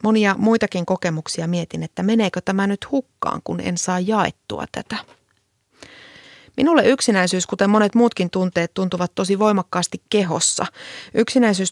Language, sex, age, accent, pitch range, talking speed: Finnish, female, 30-49, native, 170-210 Hz, 130 wpm